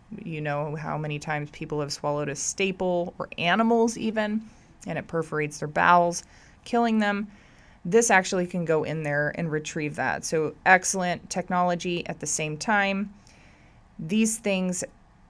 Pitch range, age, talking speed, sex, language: 155-200 Hz, 20-39, 150 wpm, female, English